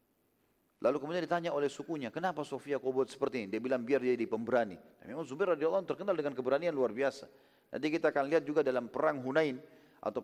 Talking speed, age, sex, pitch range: 210 wpm, 40-59, male, 145-195 Hz